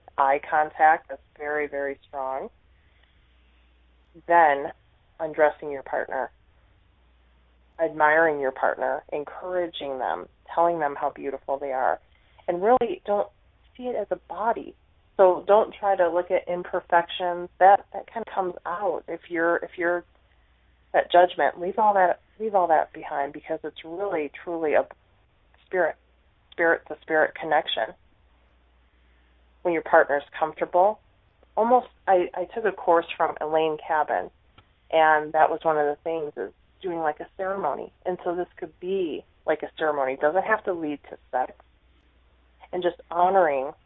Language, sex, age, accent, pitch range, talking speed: English, female, 30-49, American, 135-180 Hz, 145 wpm